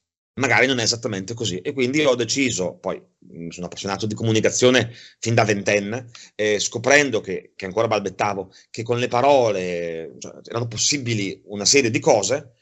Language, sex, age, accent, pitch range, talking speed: Italian, male, 30-49, native, 110-130 Hz, 160 wpm